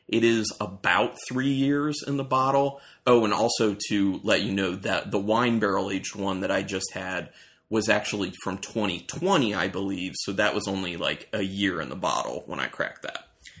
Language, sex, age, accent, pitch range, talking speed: English, male, 30-49, American, 100-120 Hz, 200 wpm